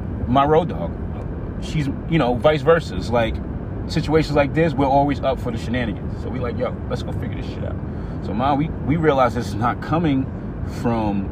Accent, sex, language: American, male, English